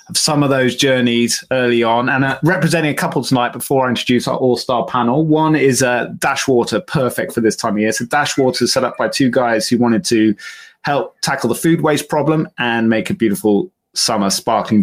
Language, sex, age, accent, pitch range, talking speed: English, male, 20-39, British, 115-140 Hz, 220 wpm